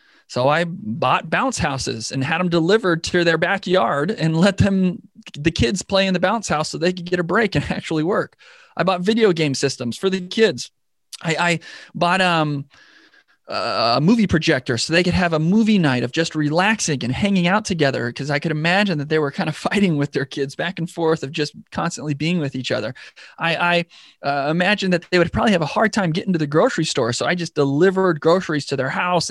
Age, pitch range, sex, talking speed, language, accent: 30-49, 145-190 Hz, male, 220 wpm, English, American